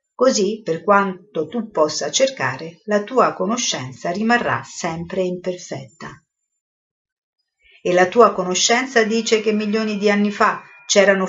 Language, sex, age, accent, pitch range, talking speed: Italian, female, 50-69, native, 165-225 Hz, 120 wpm